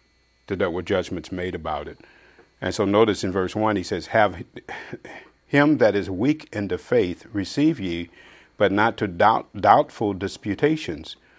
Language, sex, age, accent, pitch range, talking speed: English, male, 50-69, American, 95-110 Hz, 155 wpm